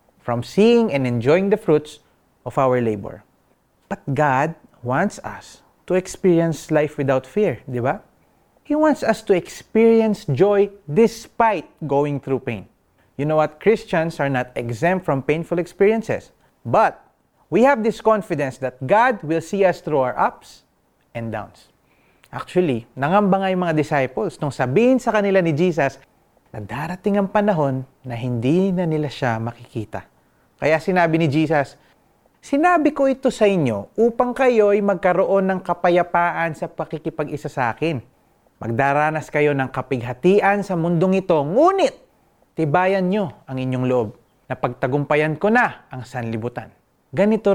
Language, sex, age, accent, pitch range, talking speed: Filipino, male, 30-49, native, 130-195 Hz, 145 wpm